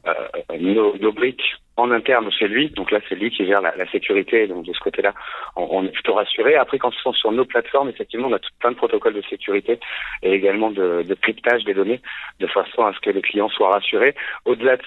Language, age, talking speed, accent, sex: French, 40-59, 240 wpm, French, male